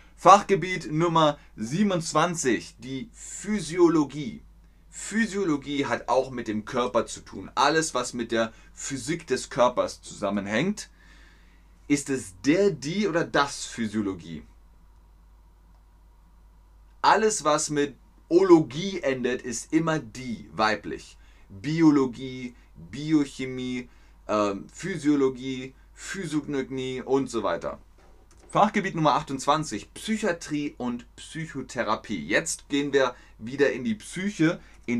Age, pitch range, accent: 30-49, 95-145 Hz, German